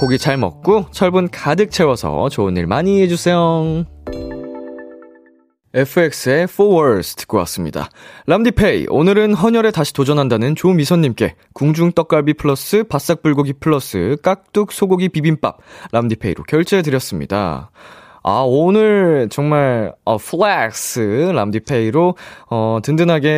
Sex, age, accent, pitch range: male, 20-39, native, 110-170 Hz